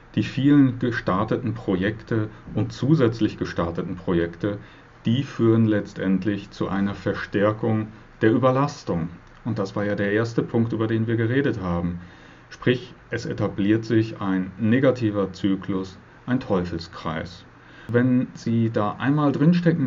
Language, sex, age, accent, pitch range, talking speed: German, male, 40-59, German, 100-130 Hz, 125 wpm